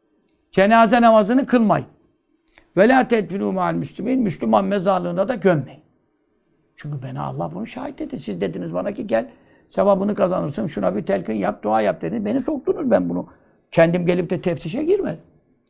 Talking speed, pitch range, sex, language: 155 wpm, 145-230 Hz, male, Turkish